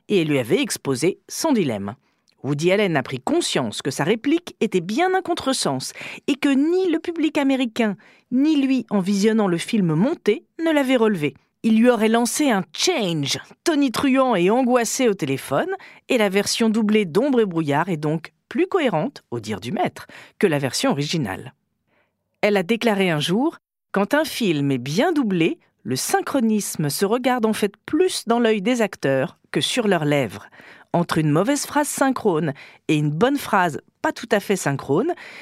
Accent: French